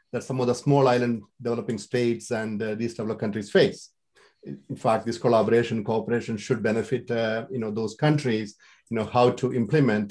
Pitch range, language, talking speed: 120-160 Hz, English, 190 wpm